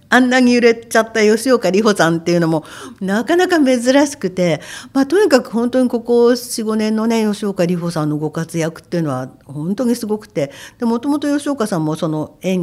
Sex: female